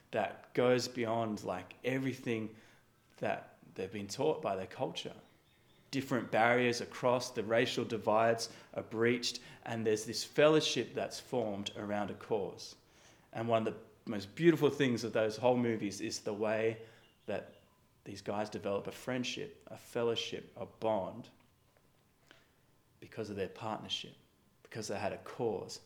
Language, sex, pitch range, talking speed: English, male, 105-120 Hz, 145 wpm